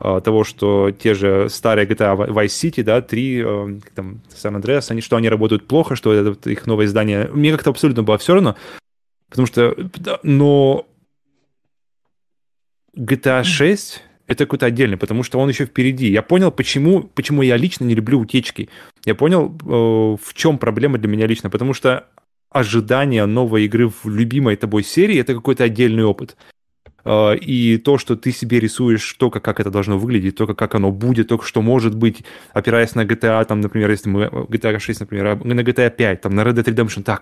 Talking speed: 170 wpm